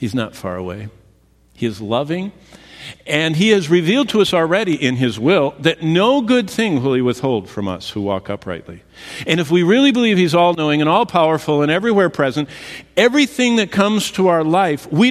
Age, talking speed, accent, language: 50-69, 190 wpm, American, English